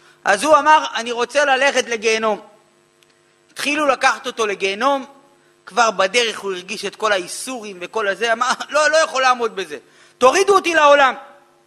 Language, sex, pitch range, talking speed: Hebrew, male, 250-340 Hz, 150 wpm